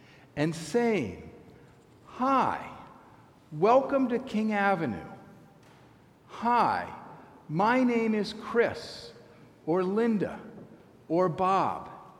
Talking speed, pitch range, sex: 80 wpm, 145-200 Hz, male